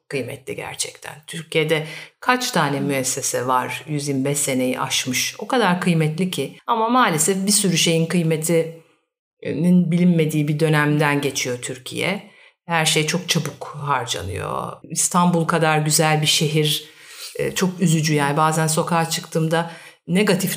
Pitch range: 155-185 Hz